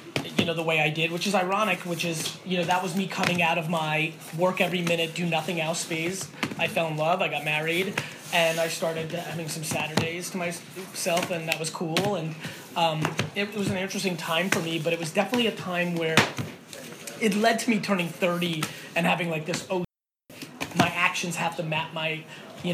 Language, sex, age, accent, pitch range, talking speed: English, male, 20-39, American, 165-190 Hz, 210 wpm